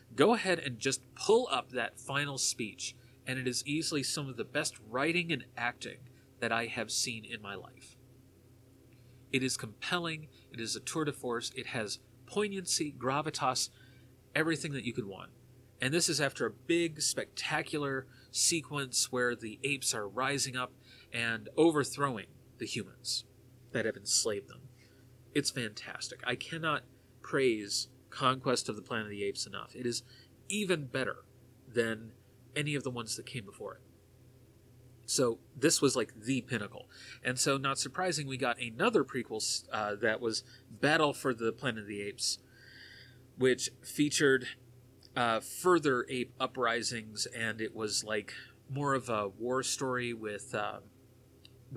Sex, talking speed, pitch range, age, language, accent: male, 155 wpm, 115-135 Hz, 30-49, English, American